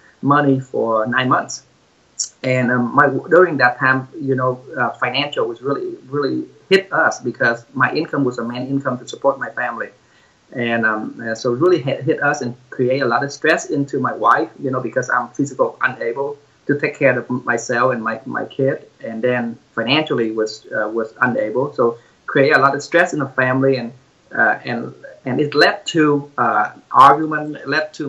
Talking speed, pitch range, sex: 190 wpm, 125-145 Hz, male